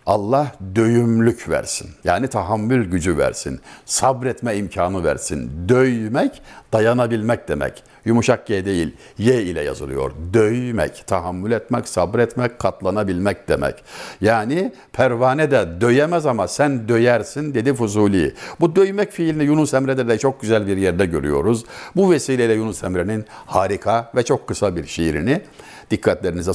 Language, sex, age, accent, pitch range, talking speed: Turkish, male, 60-79, native, 105-140 Hz, 125 wpm